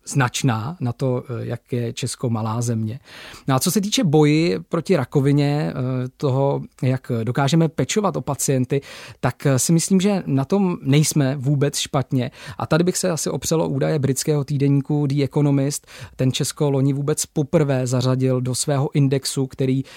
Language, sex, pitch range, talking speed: Czech, male, 130-150 Hz, 155 wpm